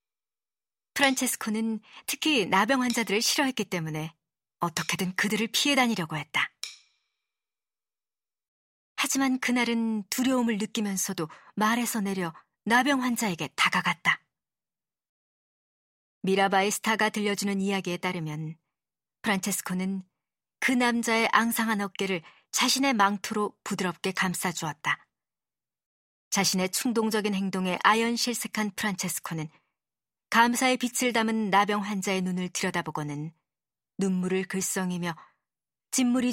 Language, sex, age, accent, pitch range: Korean, male, 40-59, native, 175-230 Hz